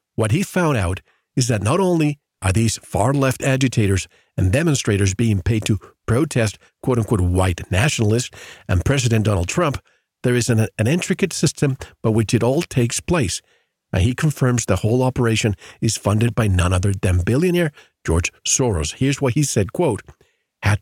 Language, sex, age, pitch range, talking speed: English, male, 50-69, 100-135 Hz, 175 wpm